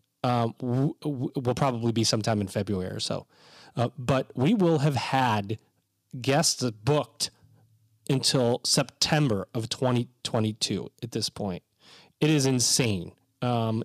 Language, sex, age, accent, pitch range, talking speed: English, male, 30-49, American, 115-150 Hz, 120 wpm